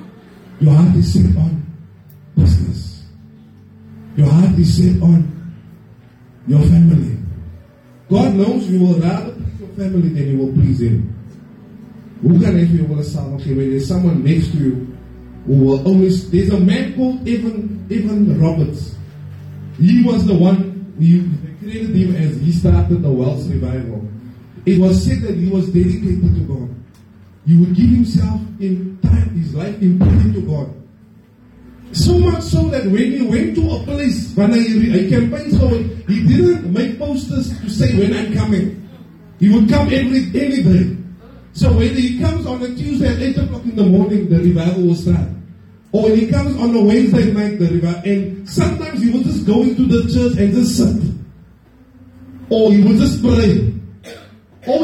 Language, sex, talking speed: English, male, 165 wpm